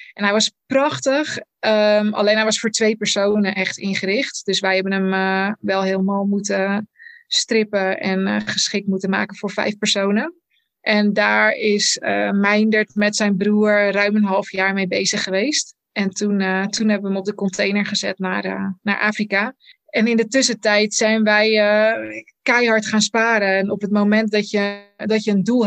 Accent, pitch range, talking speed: Dutch, 195-215 Hz, 180 wpm